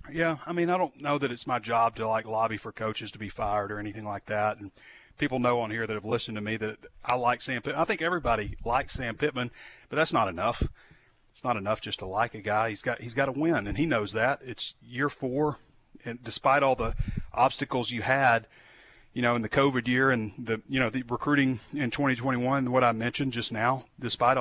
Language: English